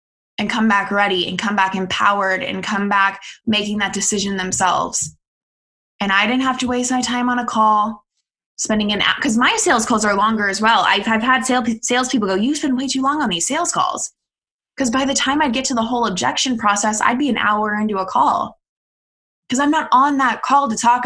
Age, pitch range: 20-39, 195-245 Hz